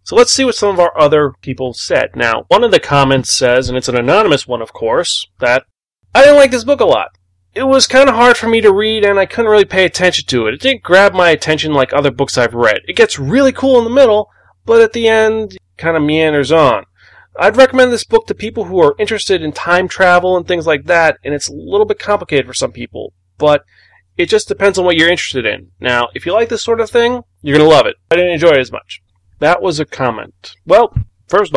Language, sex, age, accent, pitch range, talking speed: English, male, 30-49, American, 130-210 Hz, 255 wpm